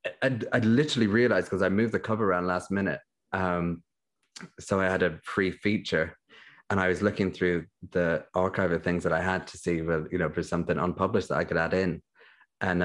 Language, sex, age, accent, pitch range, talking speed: English, male, 20-39, British, 90-115 Hz, 205 wpm